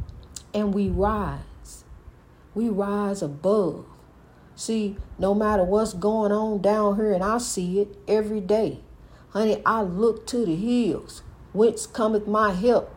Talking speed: 140 wpm